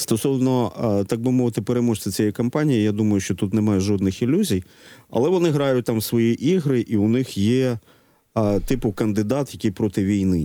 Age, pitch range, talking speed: 40-59, 100-130 Hz, 180 wpm